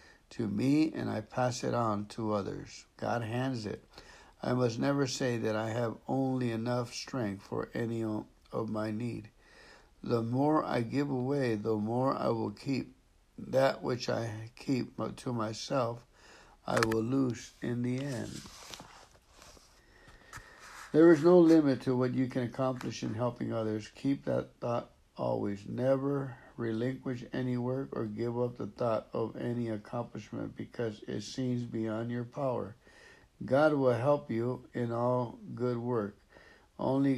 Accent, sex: American, male